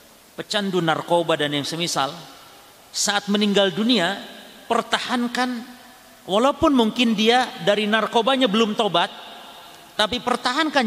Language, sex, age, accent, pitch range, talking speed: Indonesian, male, 40-59, native, 165-225 Hz, 100 wpm